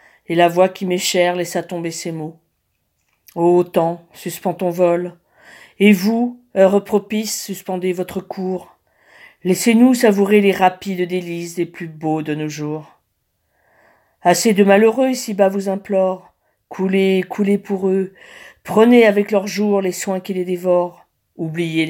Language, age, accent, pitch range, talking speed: French, 40-59, French, 170-205 Hz, 155 wpm